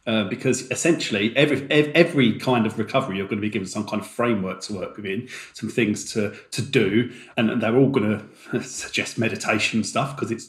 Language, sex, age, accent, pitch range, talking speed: English, male, 40-59, British, 105-135 Hz, 200 wpm